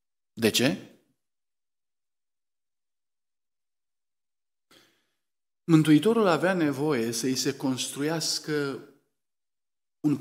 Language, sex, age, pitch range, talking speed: Romanian, male, 50-69, 165-220 Hz, 60 wpm